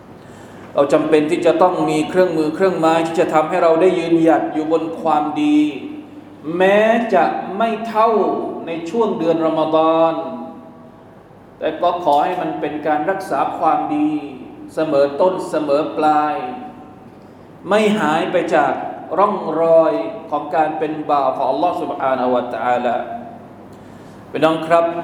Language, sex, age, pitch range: Thai, male, 20-39, 160-200 Hz